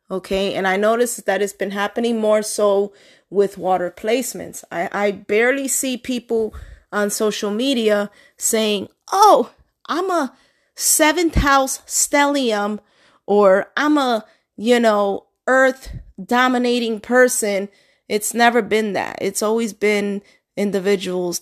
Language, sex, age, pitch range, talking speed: English, female, 20-39, 190-220 Hz, 125 wpm